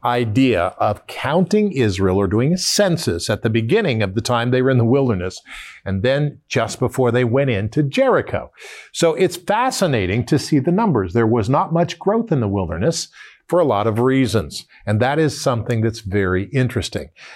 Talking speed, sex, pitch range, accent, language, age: 185 wpm, male, 115-170 Hz, American, English, 50-69